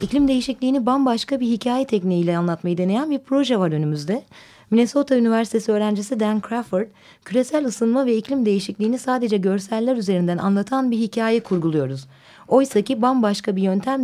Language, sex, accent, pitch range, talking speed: Turkish, female, native, 185-255 Hz, 140 wpm